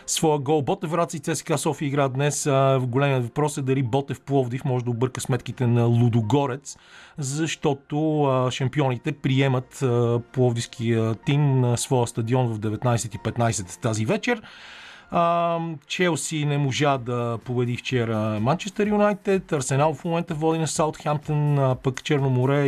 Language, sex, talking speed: Bulgarian, male, 125 wpm